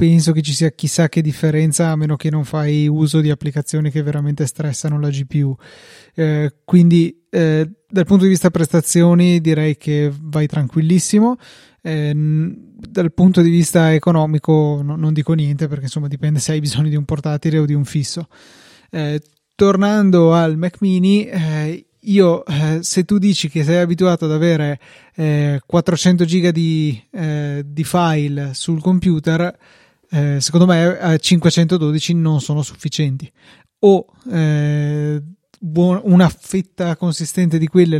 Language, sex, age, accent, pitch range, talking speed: Italian, male, 20-39, native, 150-175 Hz, 150 wpm